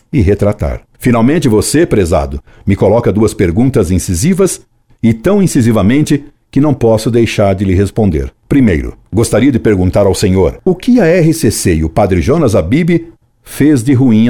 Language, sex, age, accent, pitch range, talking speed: Portuguese, male, 60-79, Brazilian, 95-125 Hz, 160 wpm